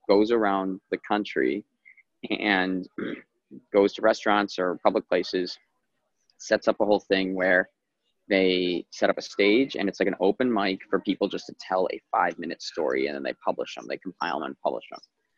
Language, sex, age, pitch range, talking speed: English, male, 20-39, 95-125 Hz, 185 wpm